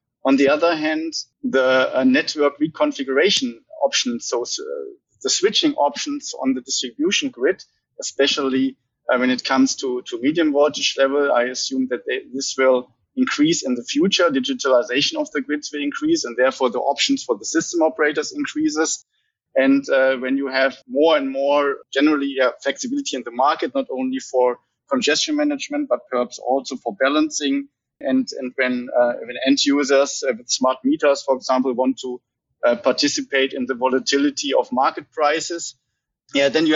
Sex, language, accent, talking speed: male, English, German, 165 wpm